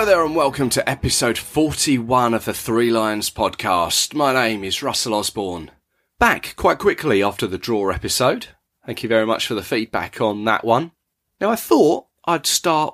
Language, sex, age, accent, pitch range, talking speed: English, male, 30-49, British, 90-135 Hz, 180 wpm